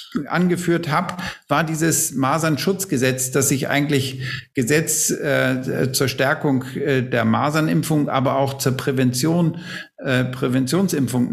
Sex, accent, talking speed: male, German, 110 wpm